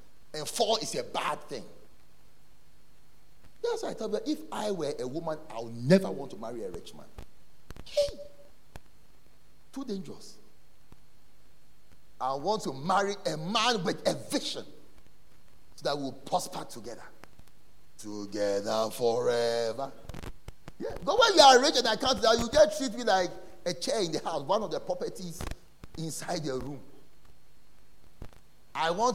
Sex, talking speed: male, 150 wpm